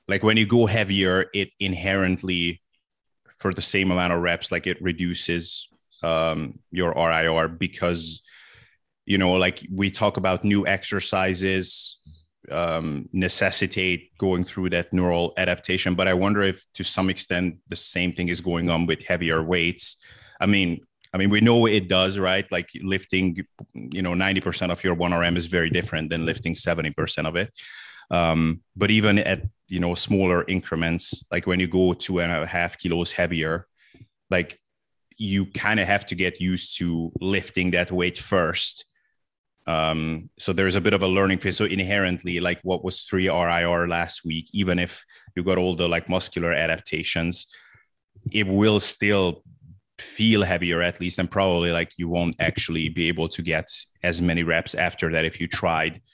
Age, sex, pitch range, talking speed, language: 30-49, male, 85-95 Hz, 175 wpm, English